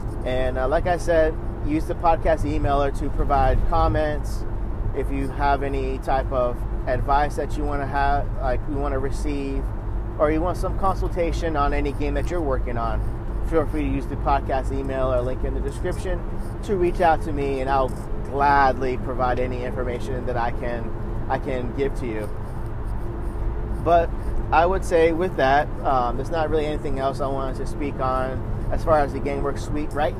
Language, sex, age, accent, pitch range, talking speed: English, male, 30-49, American, 110-145 Hz, 190 wpm